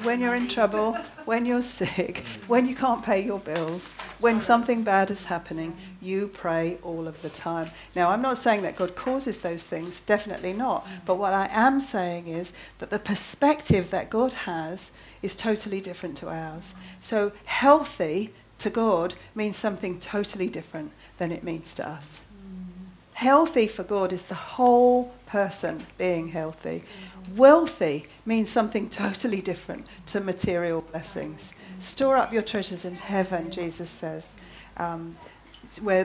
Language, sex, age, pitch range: English, female, 50-69, 170-240 Hz